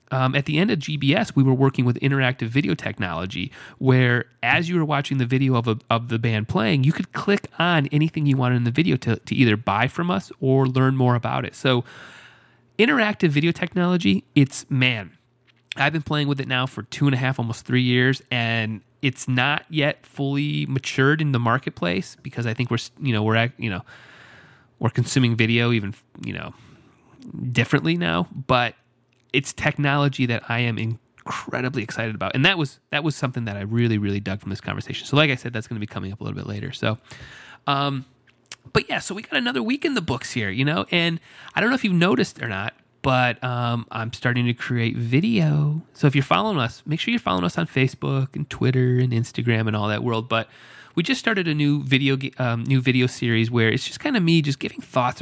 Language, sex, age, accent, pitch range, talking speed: English, male, 30-49, American, 115-145 Hz, 220 wpm